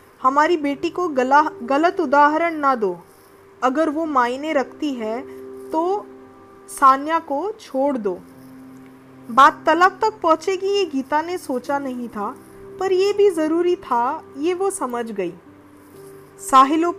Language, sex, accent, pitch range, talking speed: Hindi, female, native, 245-325 Hz, 135 wpm